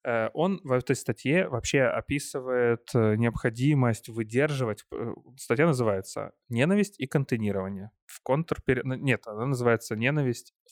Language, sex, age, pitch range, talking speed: Ukrainian, male, 20-39, 115-135 Hz, 95 wpm